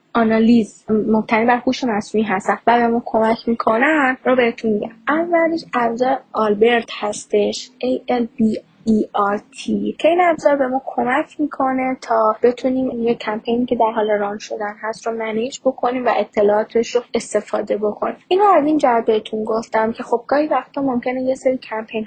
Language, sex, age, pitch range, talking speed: Persian, female, 10-29, 225-265 Hz, 165 wpm